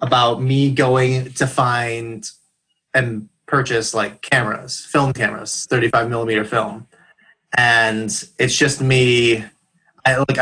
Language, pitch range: English, 115-145 Hz